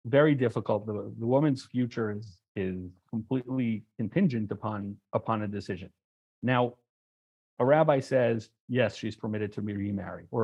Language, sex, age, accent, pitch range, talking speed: English, male, 40-59, American, 110-140 Hz, 145 wpm